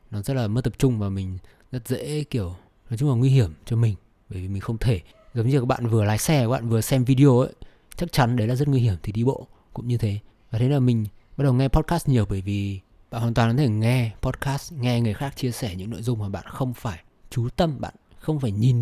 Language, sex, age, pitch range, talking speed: Vietnamese, male, 20-39, 105-130 Hz, 270 wpm